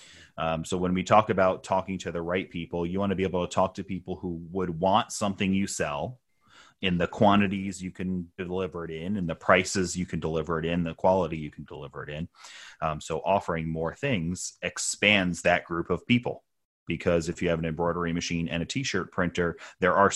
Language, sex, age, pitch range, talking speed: English, male, 30-49, 85-100 Hz, 215 wpm